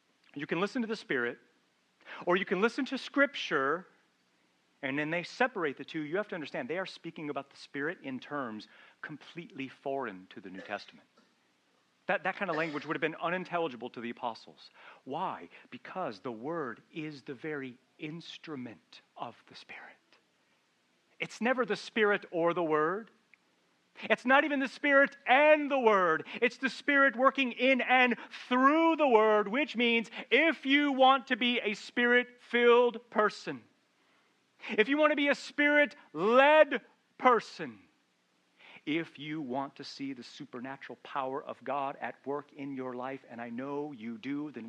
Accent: American